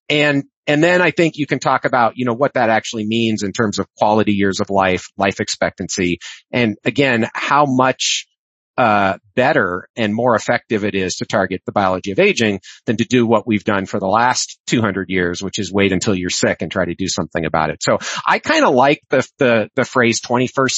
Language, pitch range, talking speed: English, 105-150 Hz, 215 wpm